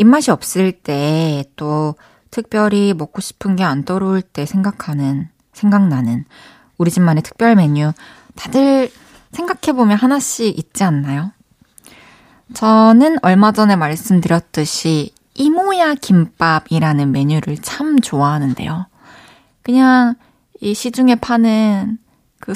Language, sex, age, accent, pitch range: Korean, female, 20-39, native, 165-240 Hz